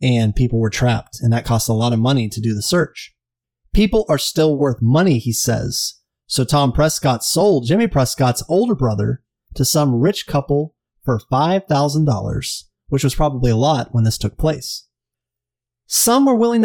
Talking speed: 175 wpm